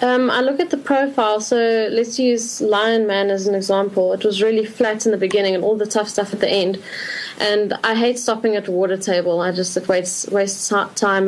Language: English